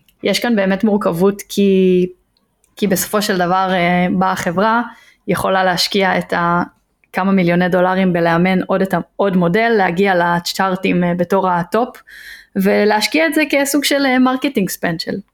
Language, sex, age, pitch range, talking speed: Hebrew, female, 20-39, 180-215 Hz, 135 wpm